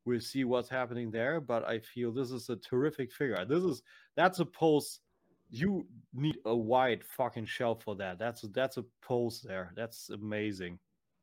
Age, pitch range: 30-49, 115-145 Hz